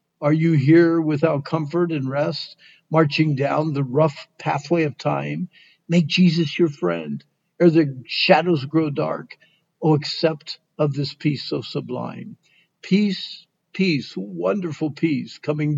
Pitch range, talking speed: 140-175 Hz, 135 wpm